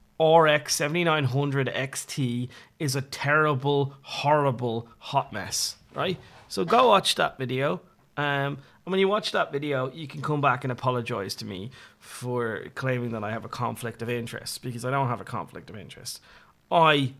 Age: 30-49